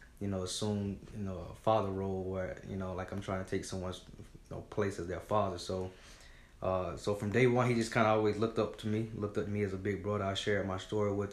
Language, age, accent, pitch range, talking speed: English, 20-39, American, 95-105 Hz, 265 wpm